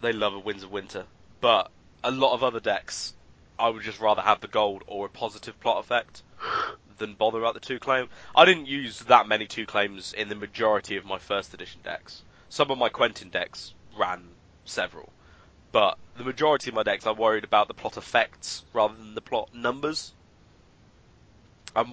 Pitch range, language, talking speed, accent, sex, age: 100-130 Hz, English, 190 wpm, British, male, 20-39